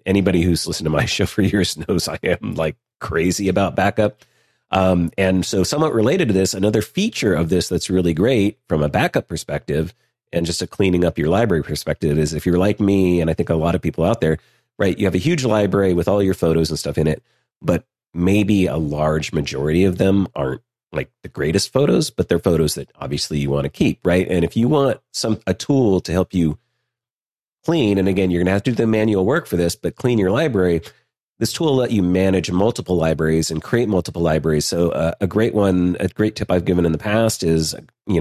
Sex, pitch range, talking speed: male, 80-100 Hz, 230 wpm